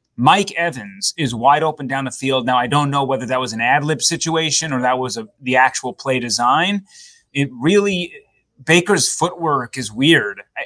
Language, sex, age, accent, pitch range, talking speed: English, male, 20-39, American, 125-160 Hz, 175 wpm